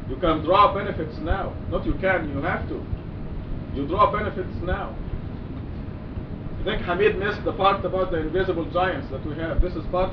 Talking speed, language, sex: 185 wpm, English, male